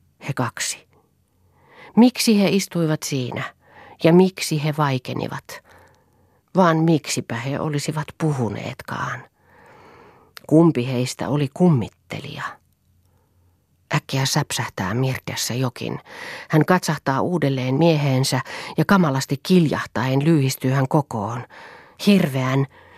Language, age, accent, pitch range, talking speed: Finnish, 40-59, native, 125-170 Hz, 90 wpm